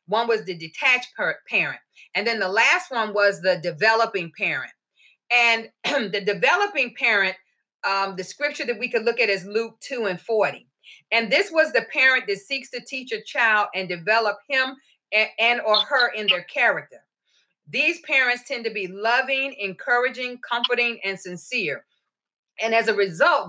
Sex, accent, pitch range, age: female, American, 210-270 Hz, 40-59